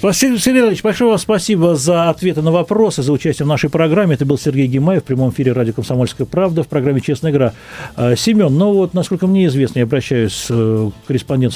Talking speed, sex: 195 wpm, male